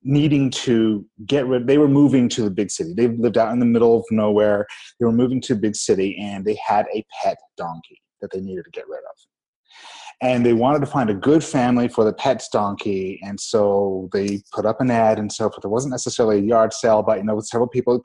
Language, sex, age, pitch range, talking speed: English, male, 30-49, 110-140 Hz, 245 wpm